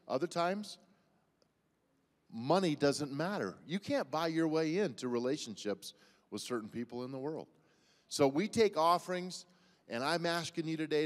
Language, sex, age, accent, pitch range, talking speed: English, male, 40-59, American, 130-160 Hz, 145 wpm